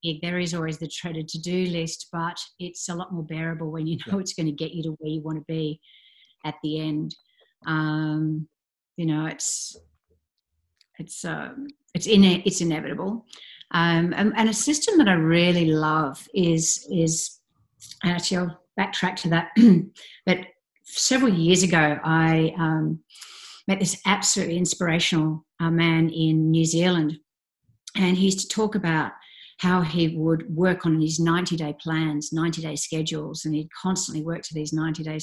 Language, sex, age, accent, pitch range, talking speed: English, female, 50-69, Australian, 155-180 Hz, 165 wpm